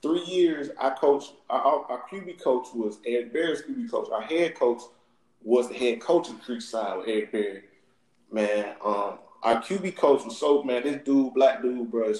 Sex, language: male, English